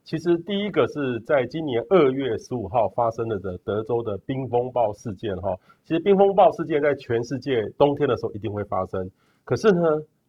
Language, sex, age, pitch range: Chinese, male, 30-49, 110-145 Hz